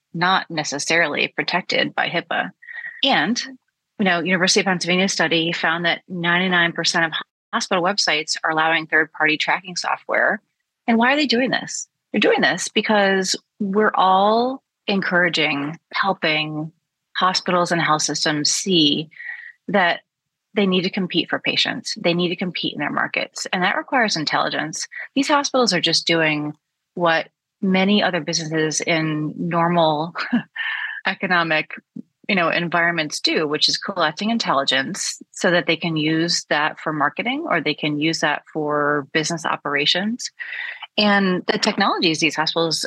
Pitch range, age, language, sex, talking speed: 155-200 Hz, 30-49, English, female, 140 wpm